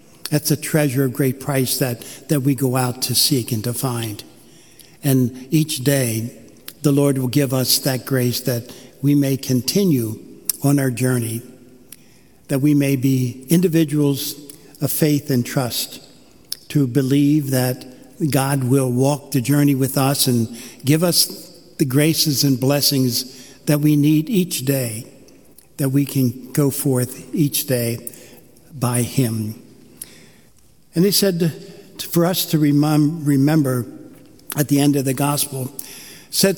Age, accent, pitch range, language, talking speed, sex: 60-79, American, 125-150 Hz, English, 145 wpm, male